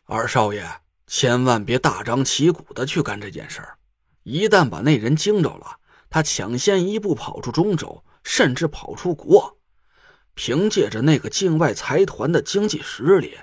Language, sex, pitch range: Chinese, male, 105-160 Hz